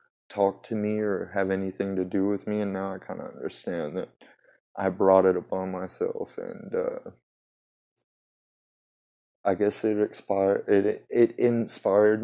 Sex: male